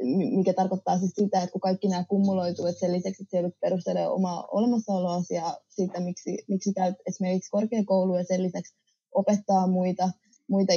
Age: 20-39